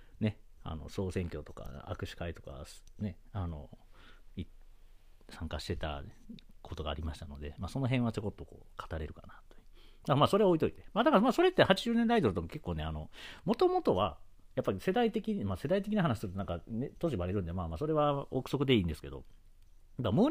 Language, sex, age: Japanese, male, 40-59